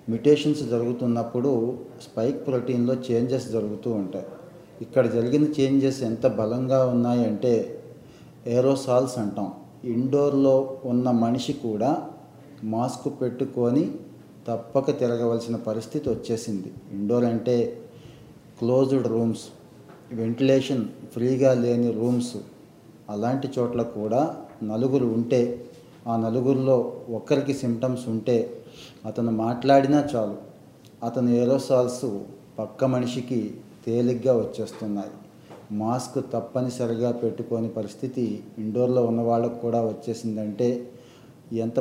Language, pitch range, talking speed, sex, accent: Telugu, 115-130 Hz, 90 wpm, male, native